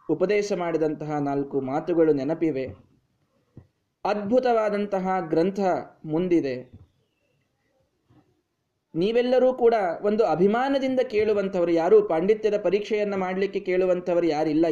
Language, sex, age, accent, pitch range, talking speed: Kannada, male, 20-39, native, 135-180 Hz, 75 wpm